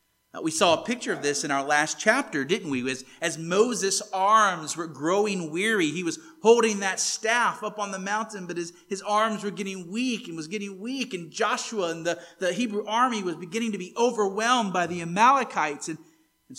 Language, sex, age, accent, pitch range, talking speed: English, male, 30-49, American, 125-200 Hz, 205 wpm